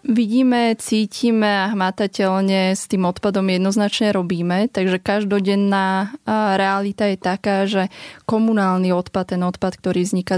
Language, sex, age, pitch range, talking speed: Slovak, female, 20-39, 180-200 Hz, 120 wpm